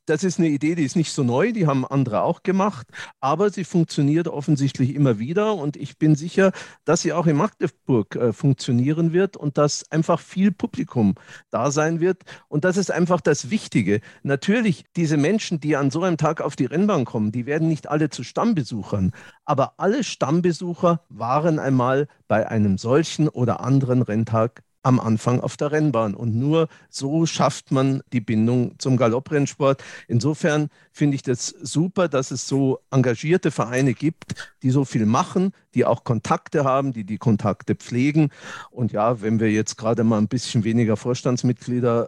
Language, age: German, 50-69